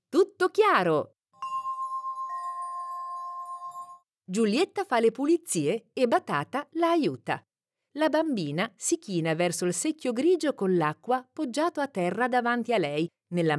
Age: 50-69